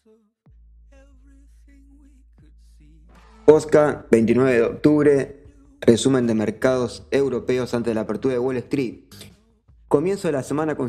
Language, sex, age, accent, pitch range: Spanish, male, 20-39, Argentinian, 120-140 Hz